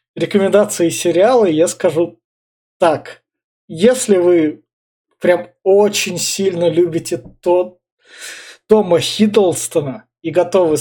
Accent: native